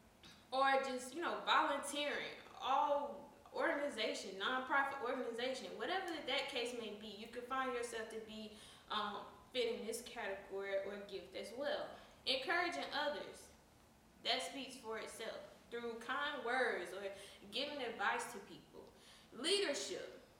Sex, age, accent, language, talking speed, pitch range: female, 10-29, American, English, 130 wpm, 215-285 Hz